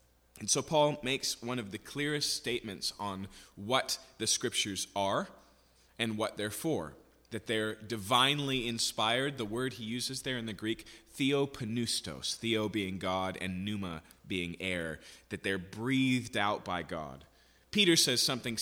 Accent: American